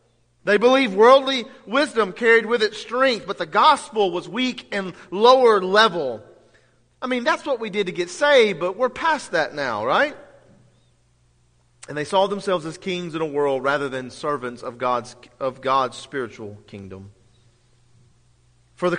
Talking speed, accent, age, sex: 160 wpm, American, 40-59, male